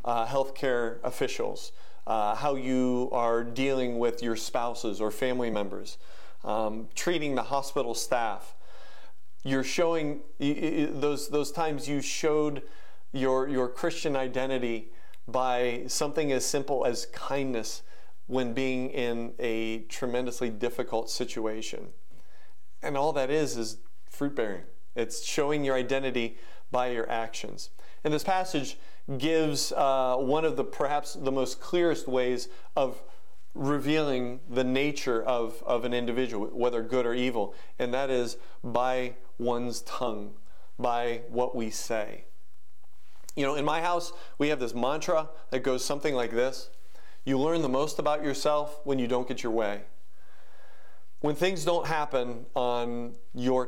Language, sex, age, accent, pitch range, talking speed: English, male, 40-59, American, 120-145 Hz, 140 wpm